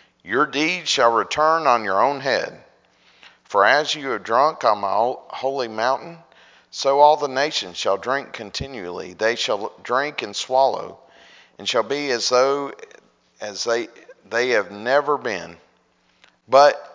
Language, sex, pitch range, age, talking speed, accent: English, male, 105-145 Hz, 40-59, 145 wpm, American